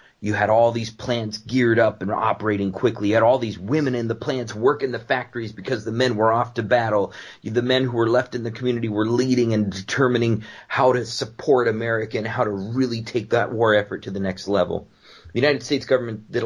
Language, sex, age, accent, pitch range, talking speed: English, male, 30-49, American, 105-125 Hz, 220 wpm